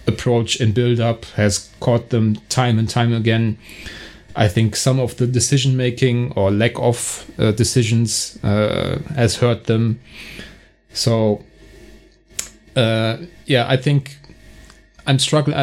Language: English